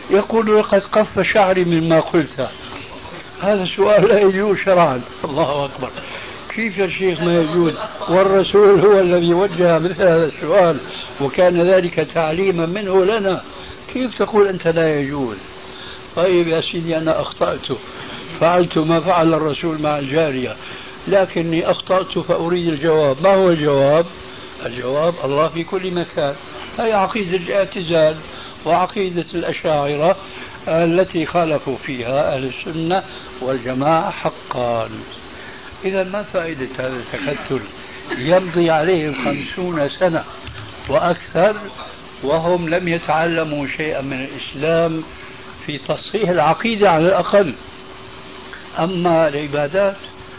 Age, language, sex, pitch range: 60-79, Arabic, male, 150-190 Hz